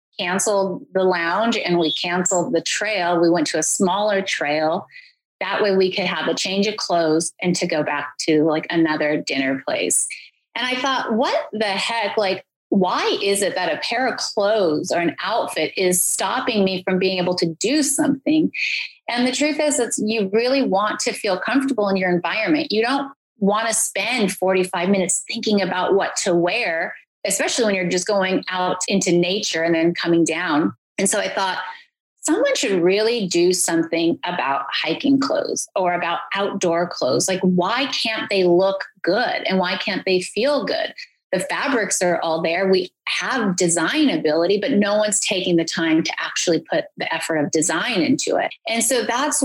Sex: female